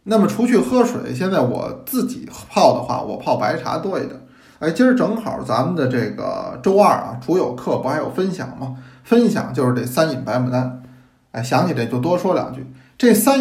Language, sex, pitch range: Chinese, male, 125-195 Hz